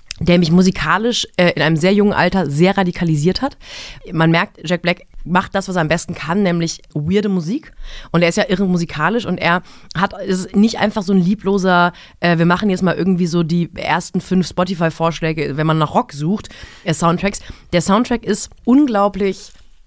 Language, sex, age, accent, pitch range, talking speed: German, female, 30-49, German, 170-205 Hz, 185 wpm